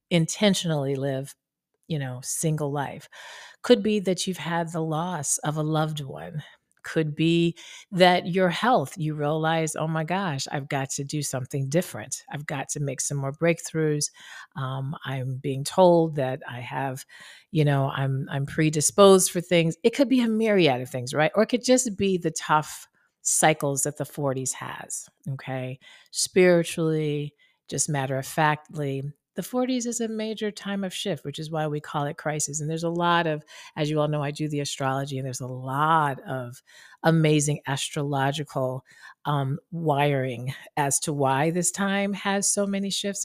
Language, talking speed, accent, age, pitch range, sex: English, 175 wpm, American, 40-59, 140-185 Hz, female